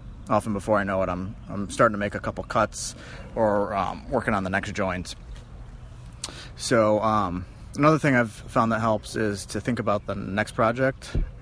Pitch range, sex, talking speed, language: 95-115 Hz, male, 185 wpm, English